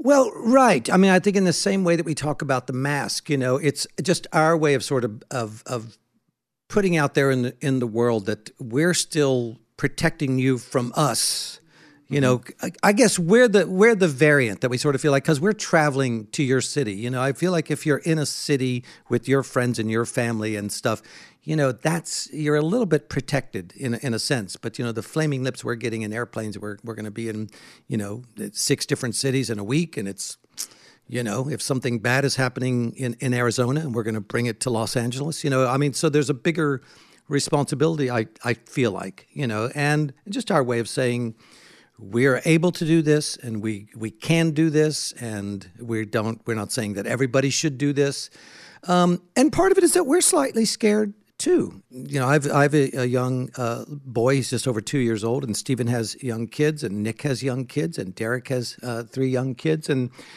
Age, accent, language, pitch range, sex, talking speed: 60-79, American, English, 120-155 Hz, male, 220 wpm